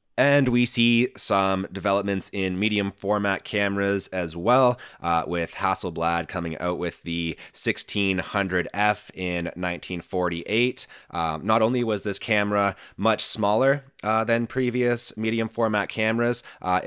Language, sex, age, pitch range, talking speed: English, male, 20-39, 90-110 Hz, 130 wpm